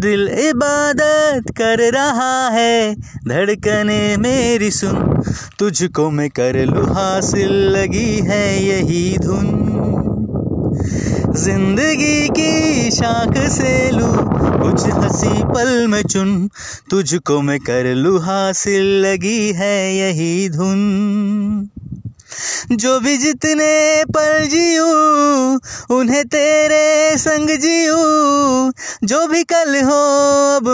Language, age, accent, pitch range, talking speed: Hindi, 20-39, native, 195-295 Hz, 100 wpm